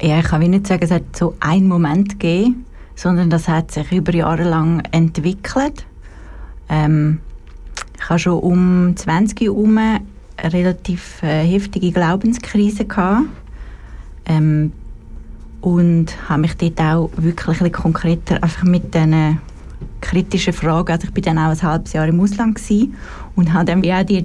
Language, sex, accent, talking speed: German, female, Swiss, 150 wpm